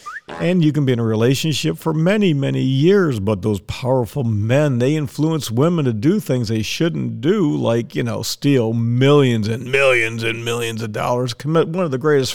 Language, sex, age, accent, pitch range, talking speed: English, male, 50-69, American, 120-160 Hz, 195 wpm